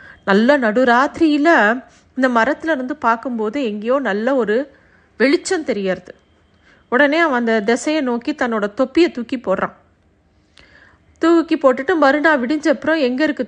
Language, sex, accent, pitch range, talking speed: Tamil, female, native, 235-300 Hz, 95 wpm